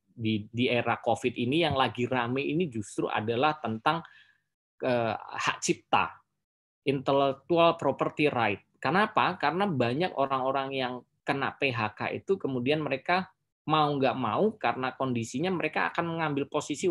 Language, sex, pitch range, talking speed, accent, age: Indonesian, male, 125-170 Hz, 130 wpm, native, 20-39